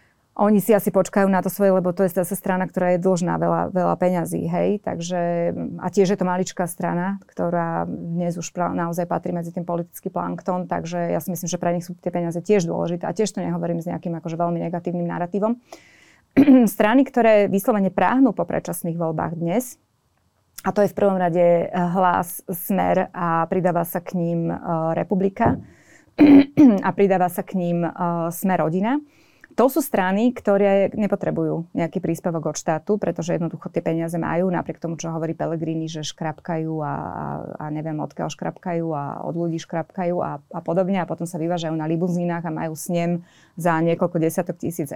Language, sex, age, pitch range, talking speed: Slovak, female, 20-39, 170-195 Hz, 180 wpm